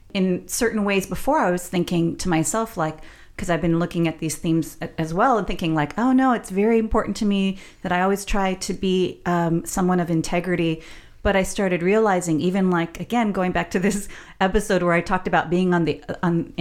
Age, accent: 40-59, American